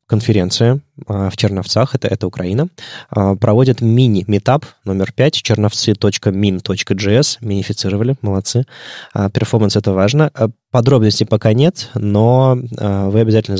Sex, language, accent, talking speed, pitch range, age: male, Russian, native, 95 wpm, 100-120 Hz, 20-39